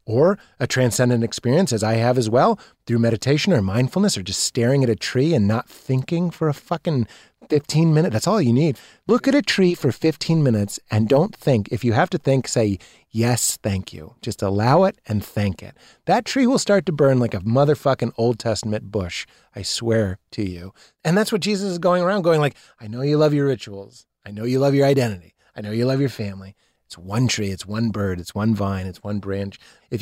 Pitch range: 110-145 Hz